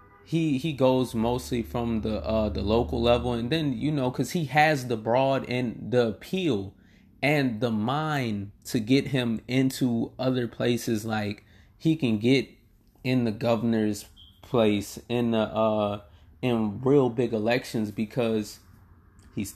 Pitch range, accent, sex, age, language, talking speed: 100-135 Hz, American, male, 20-39, English, 145 wpm